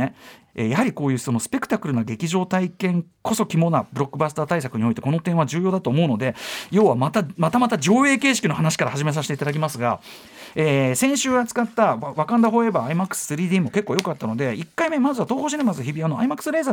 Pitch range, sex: 145-230 Hz, male